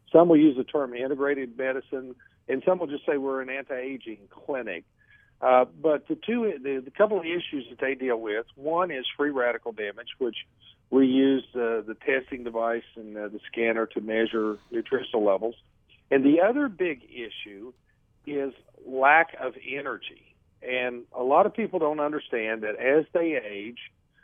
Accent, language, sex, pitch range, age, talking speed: American, English, male, 115-145 Hz, 50-69, 175 wpm